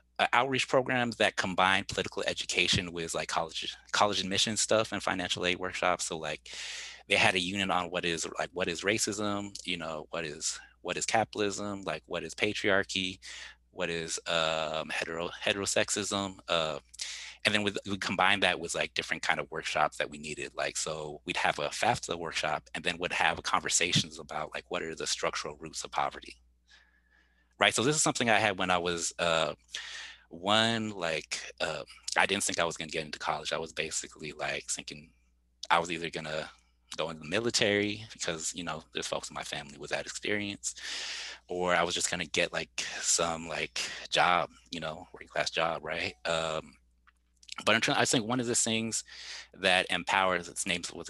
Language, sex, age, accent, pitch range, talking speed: English, male, 30-49, American, 80-105 Hz, 190 wpm